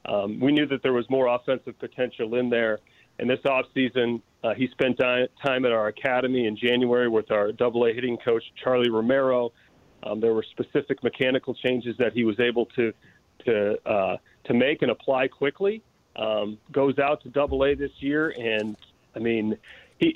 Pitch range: 120-145 Hz